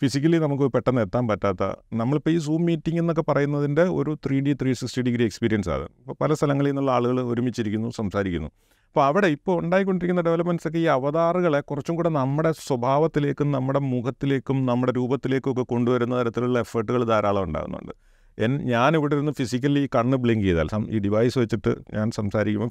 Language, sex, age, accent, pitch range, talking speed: Malayalam, male, 40-59, native, 110-140 Hz, 155 wpm